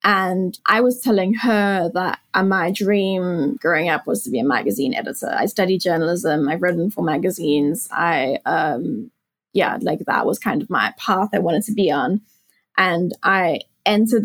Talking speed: 175 wpm